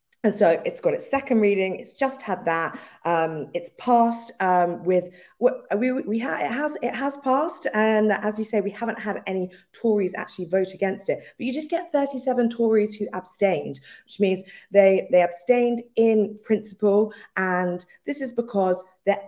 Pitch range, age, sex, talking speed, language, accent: 165-235 Hz, 20-39, female, 175 wpm, English, British